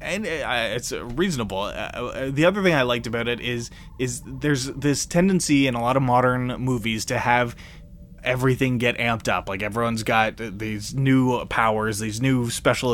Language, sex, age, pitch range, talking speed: English, male, 20-39, 110-140 Hz, 165 wpm